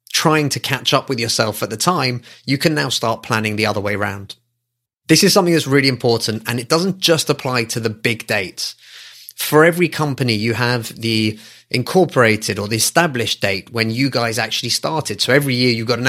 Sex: male